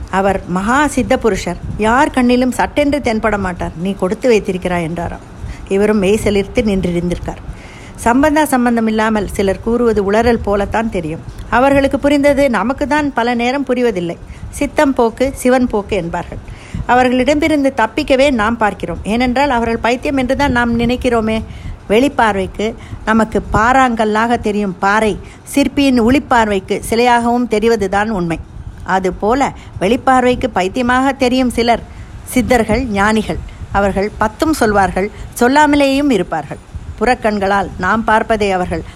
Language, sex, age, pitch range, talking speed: Tamil, female, 50-69, 195-255 Hz, 115 wpm